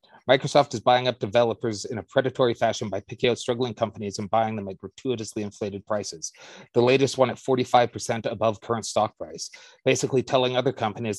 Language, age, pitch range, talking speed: English, 30-49, 110-130 Hz, 180 wpm